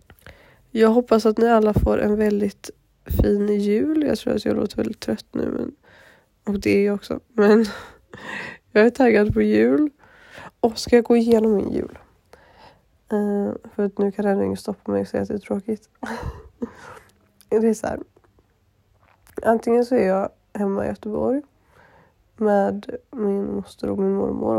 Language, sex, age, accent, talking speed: Swedish, female, 20-39, native, 170 wpm